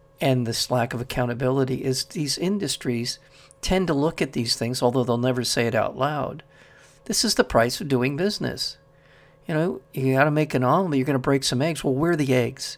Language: English